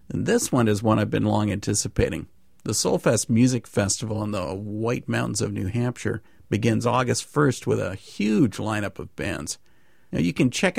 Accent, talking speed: American, 185 wpm